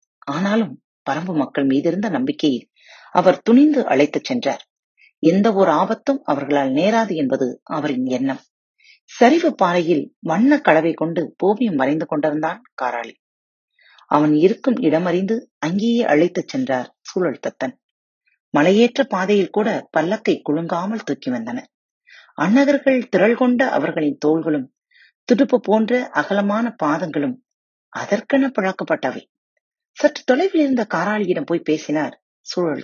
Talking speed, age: 105 wpm, 30-49